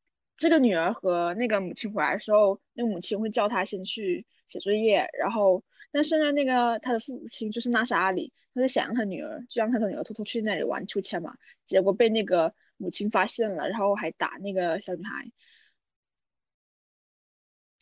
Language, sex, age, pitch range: Chinese, female, 20-39, 200-260 Hz